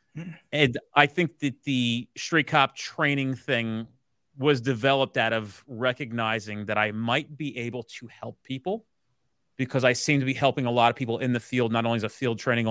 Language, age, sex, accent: English, 30-49, male, American